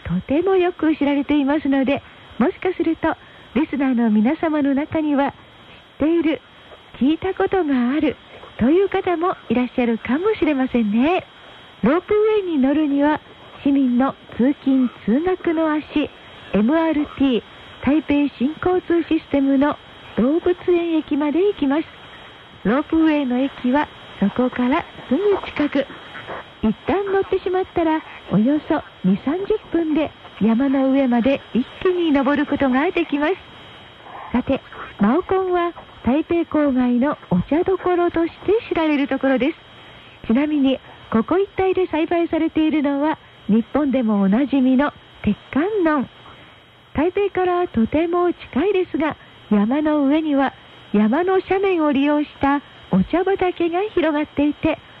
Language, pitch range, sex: Korean, 265-340 Hz, female